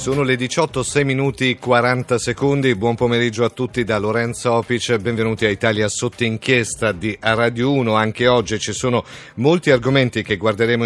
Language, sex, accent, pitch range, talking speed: Italian, male, native, 110-130 Hz, 165 wpm